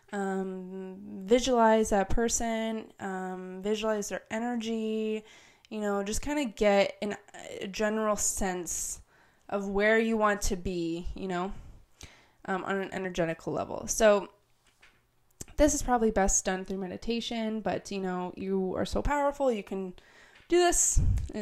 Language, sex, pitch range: English, female, 185-225 Hz